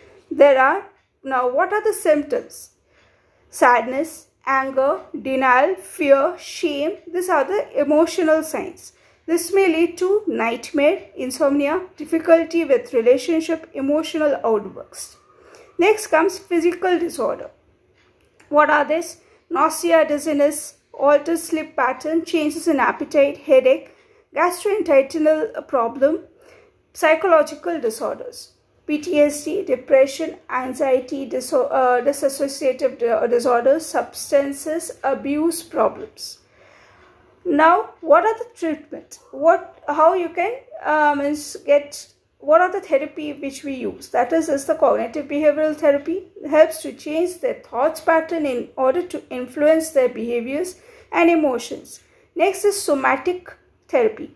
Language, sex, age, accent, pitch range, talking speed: Hindi, female, 50-69, native, 280-350 Hz, 115 wpm